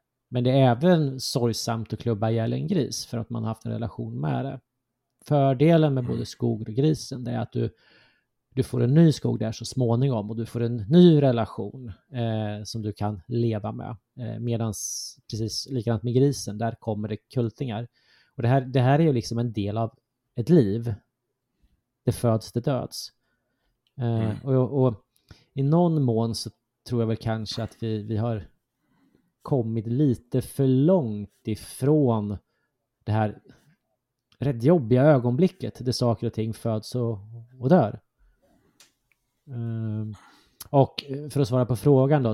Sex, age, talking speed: male, 30-49, 165 wpm